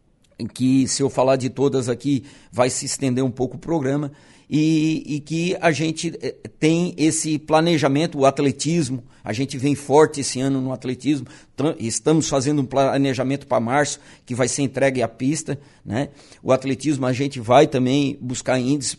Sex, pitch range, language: male, 130-155 Hz, Portuguese